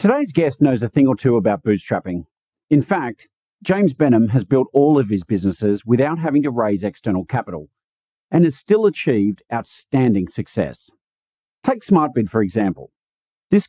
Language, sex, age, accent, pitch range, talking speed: English, male, 50-69, Australian, 105-150 Hz, 160 wpm